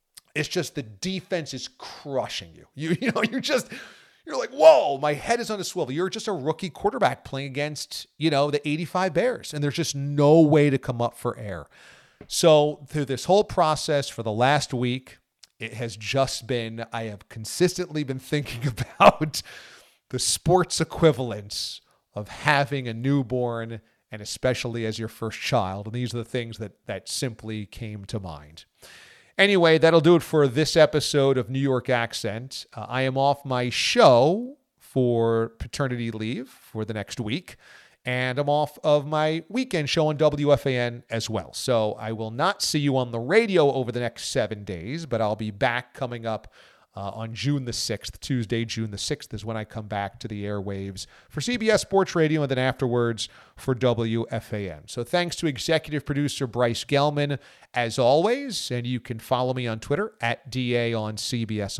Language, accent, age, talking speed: English, American, 40-59, 180 wpm